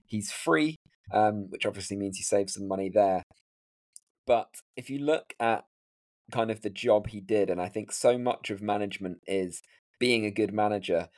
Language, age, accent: English, 20-39, British